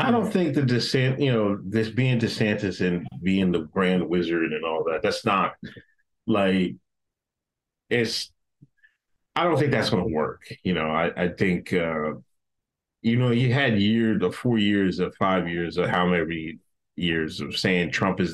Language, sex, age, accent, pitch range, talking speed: English, male, 30-49, American, 90-115 Hz, 175 wpm